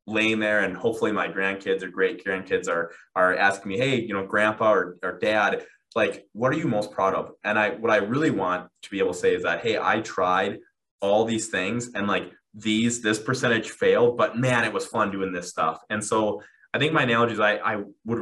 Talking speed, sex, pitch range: 230 wpm, male, 100-125 Hz